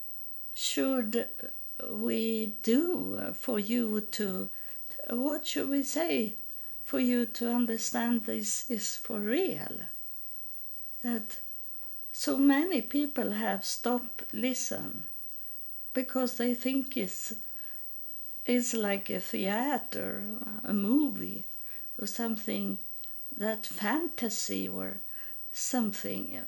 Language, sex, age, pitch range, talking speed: English, female, 50-69, 200-245 Hz, 95 wpm